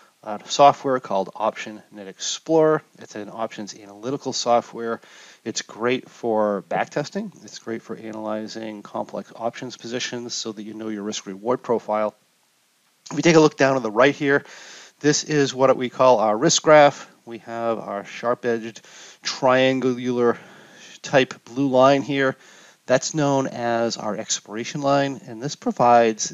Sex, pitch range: male, 110-140 Hz